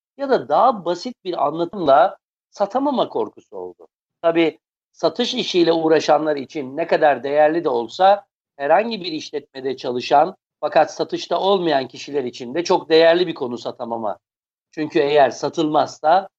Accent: native